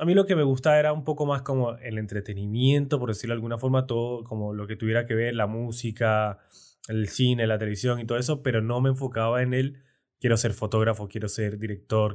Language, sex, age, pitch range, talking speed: Spanish, male, 20-39, 110-130 Hz, 225 wpm